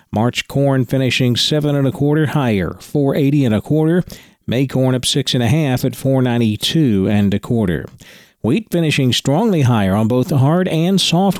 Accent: American